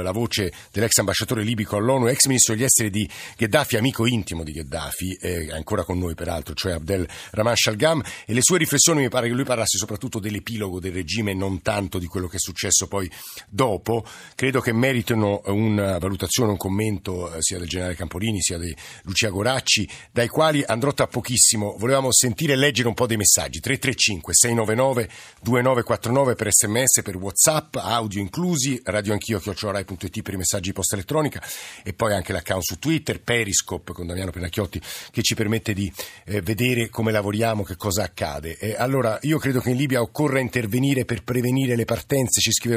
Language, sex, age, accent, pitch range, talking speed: Italian, male, 50-69, native, 100-130 Hz, 175 wpm